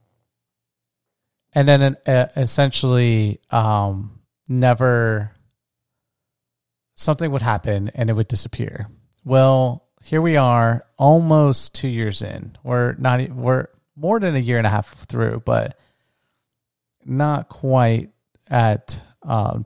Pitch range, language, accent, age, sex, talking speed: 110-130 Hz, English, American, 30-49, male, 110 wpm